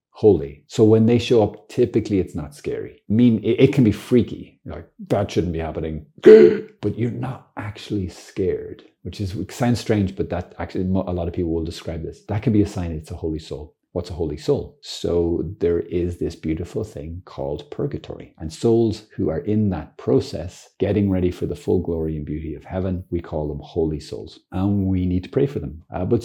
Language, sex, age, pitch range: English, male, 40-59, 85-110 Hz